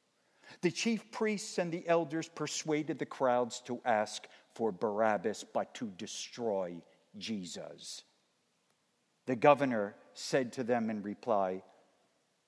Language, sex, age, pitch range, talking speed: English, male, 50-69, 125-205 Hz, 115 wpm